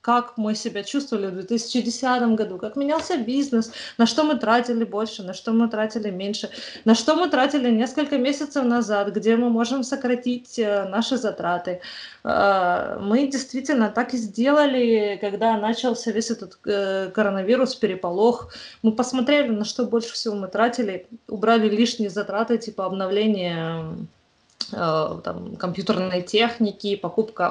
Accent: native